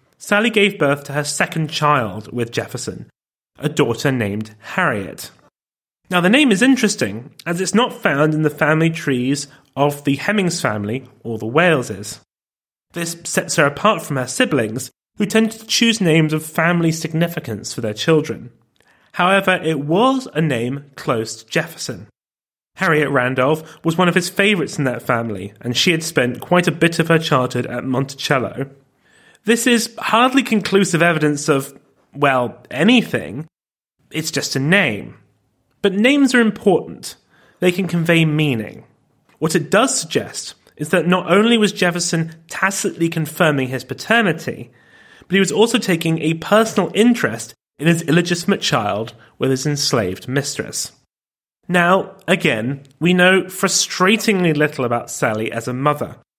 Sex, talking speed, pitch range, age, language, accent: male, 150 wpm, 130-185 Hz, 30-49, English, British